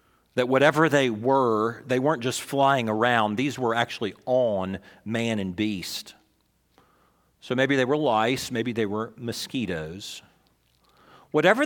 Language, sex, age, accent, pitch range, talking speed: English, male, 40-59, American, 115-170 Hz, 135 wpm